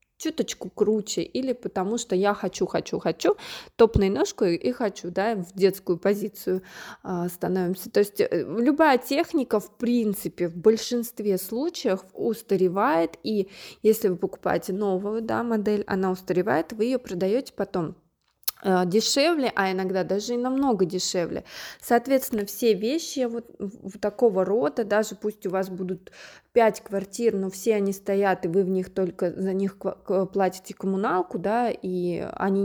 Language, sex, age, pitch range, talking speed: Russian, female, 20-39, 190-235 Hz, 145 wpm